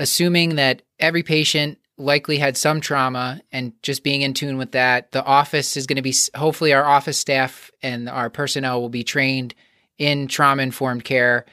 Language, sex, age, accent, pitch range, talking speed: English, male, 30-49, American, 125-145 Hz, 175 wpm